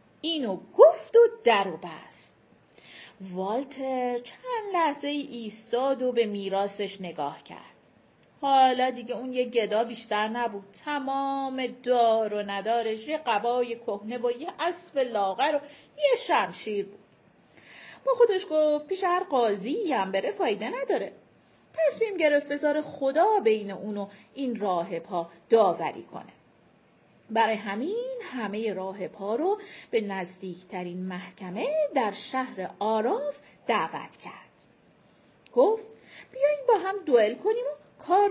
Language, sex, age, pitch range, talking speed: Persian, female, 40-59, 210-310 Hz, 125 wpm